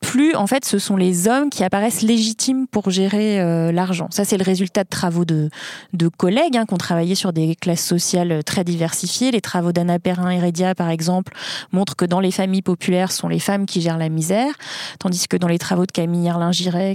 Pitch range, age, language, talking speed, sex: 175-215 Hz, 20-39, French, 225 wpm, female